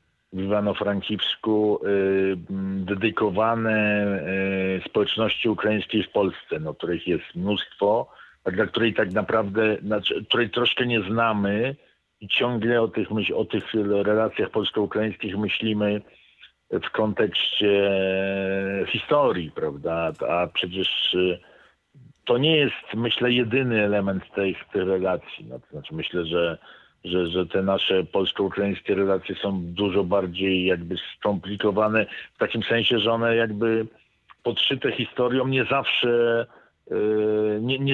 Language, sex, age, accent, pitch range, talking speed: Polish, male, 50-69, native, 95-110 Hz, 115 wpm